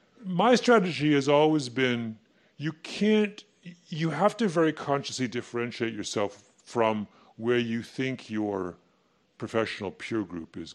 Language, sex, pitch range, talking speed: English, female, 100-150 Hz, 130 wpm